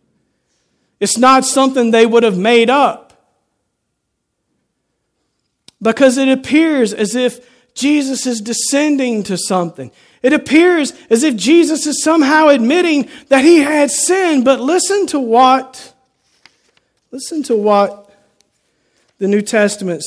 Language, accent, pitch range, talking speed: English, American, 205-275 Hz, 120 wpm